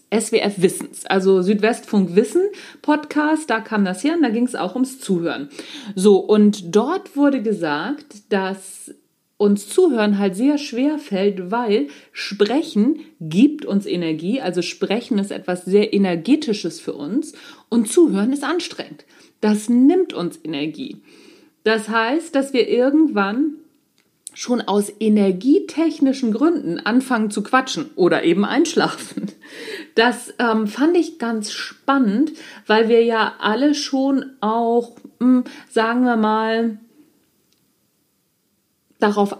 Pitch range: 205-295 Hz